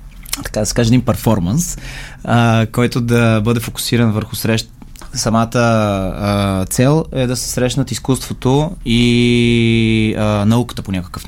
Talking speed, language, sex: 140 wpm, Bulgarian, male